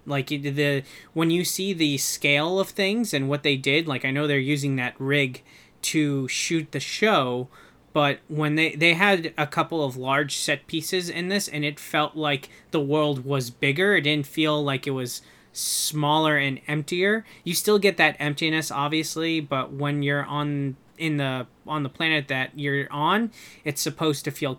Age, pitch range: 20-39, 140-160 Hz